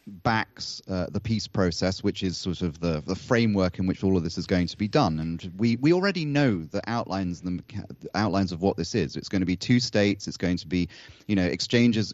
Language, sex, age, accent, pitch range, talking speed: English, male, 30-49, British, 95-115 Hz, 240 wpm